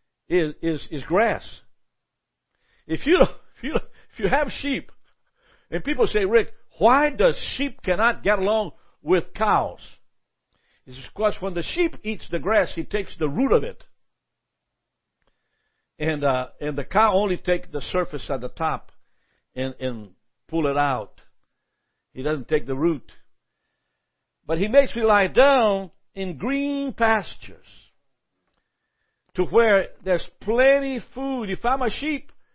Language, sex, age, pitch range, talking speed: English, male, 60-79, 150-220 Hz, 145 wpm